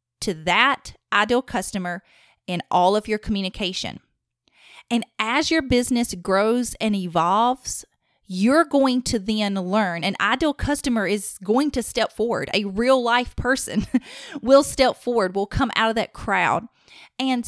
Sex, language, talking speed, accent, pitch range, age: female, English, 150 wpm, American, 190-245 Hz, 30-49